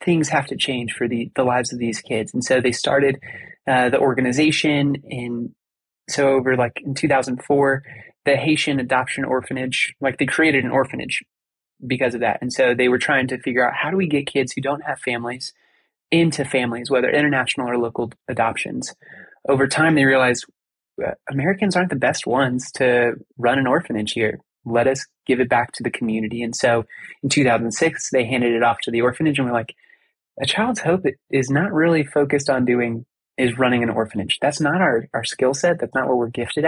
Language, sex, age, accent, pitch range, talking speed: English, male, 20-39, American, 120-145 Hz, 195 wpm